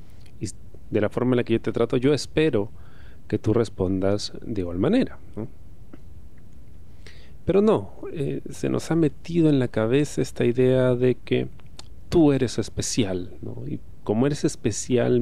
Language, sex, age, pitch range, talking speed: Spanish, male, 40-59, 95-125 Hz, 160 wpm